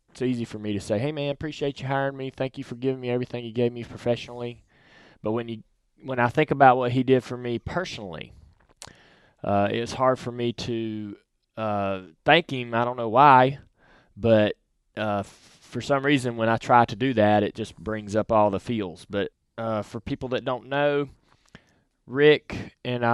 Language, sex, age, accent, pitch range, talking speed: English, male, 20-39, American, 105-130 Hz, 195 wpm